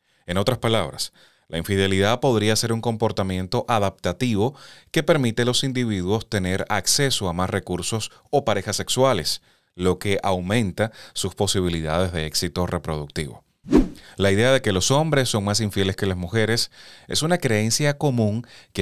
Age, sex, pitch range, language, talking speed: 30-49, male, 90-115 Hz, Spanish, 155 wpm